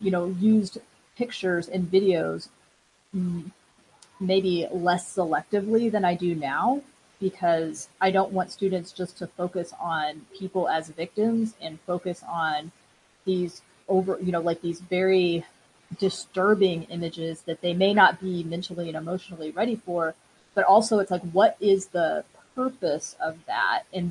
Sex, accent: female, American